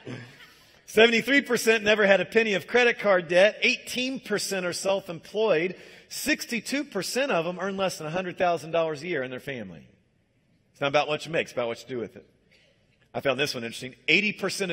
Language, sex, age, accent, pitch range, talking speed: English, male, 40-59, American, 130-185 Hz, 170 wpm